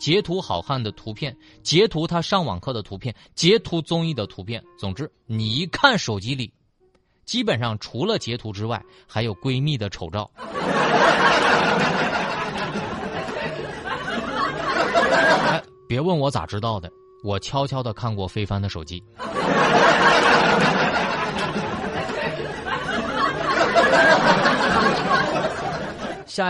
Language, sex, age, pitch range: Chinese, male, 30-49, 105-175 Hz